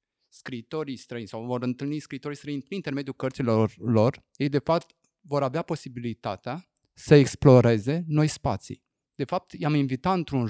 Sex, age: male, 30-49